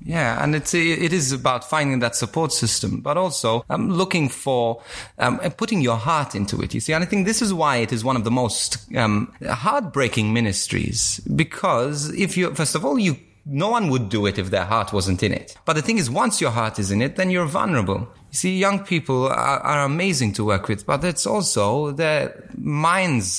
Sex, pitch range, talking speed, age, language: male, 115-170 Hz, 215 wpm, 30-49, English